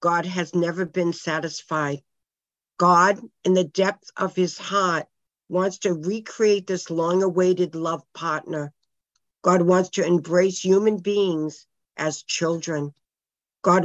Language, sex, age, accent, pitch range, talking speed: English, female, 50-69, American, 165-210 Hz, 120 wpm